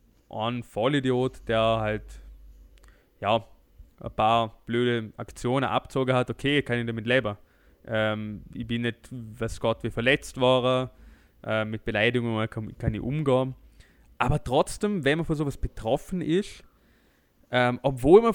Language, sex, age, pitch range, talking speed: German, male, 20-39, 115-135 Hz, 135 wpm